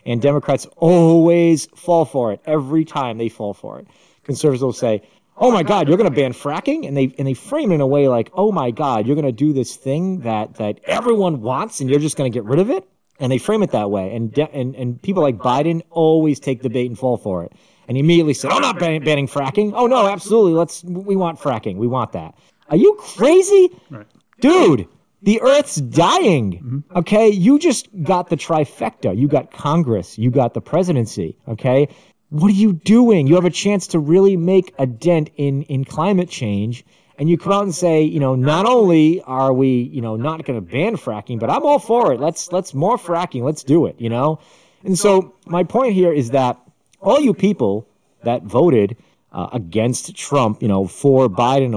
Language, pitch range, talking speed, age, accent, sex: English, 130-180 Hz, 215 wpm, 40-59, American, male